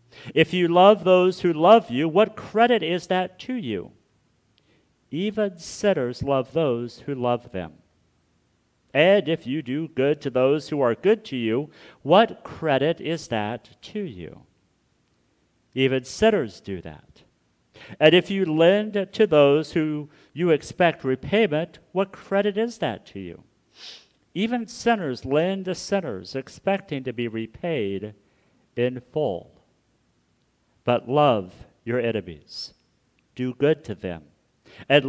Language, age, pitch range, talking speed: English, 50-69, 115-175 Hz, 135 wpm